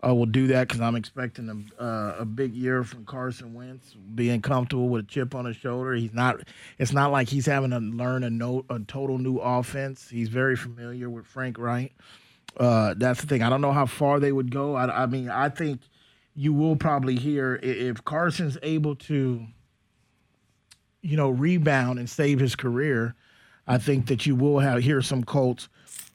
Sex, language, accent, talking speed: male, English, American, 190 wpm